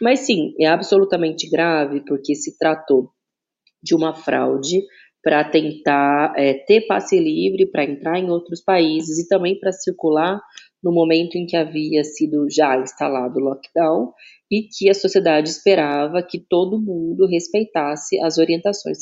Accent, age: Brazilian, 30-49